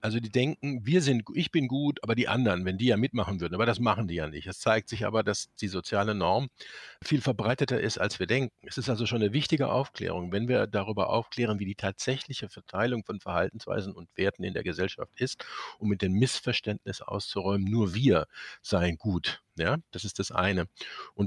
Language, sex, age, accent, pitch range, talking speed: German, male, 50-69, German, 100-125 Hz, 210 wpm